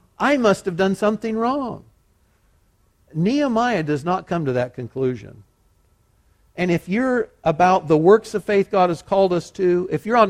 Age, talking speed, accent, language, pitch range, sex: 50-69, 170 wpm, American, English, 150-210 Hz, male